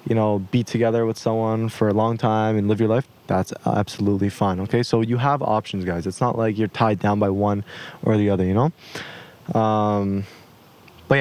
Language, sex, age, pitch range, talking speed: English, male, 20-39, 110-135 Hz, 205 wpm